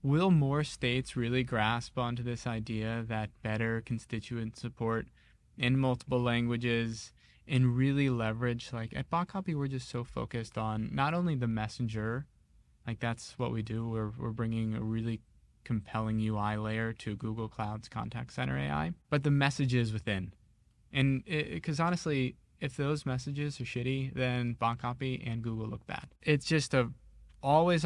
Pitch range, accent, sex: 115-135 Hz, American, male